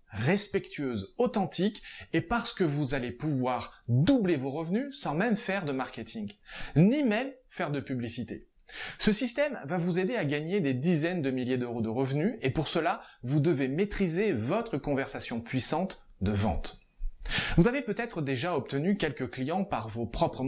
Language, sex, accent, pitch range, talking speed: French, male, French, 135-205 Hz, 165 wpm